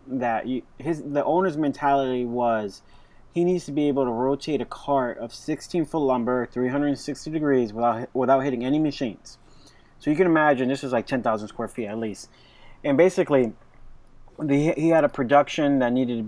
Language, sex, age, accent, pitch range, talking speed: English, male, 20-39, American, 120-140 Hz, 195 wpm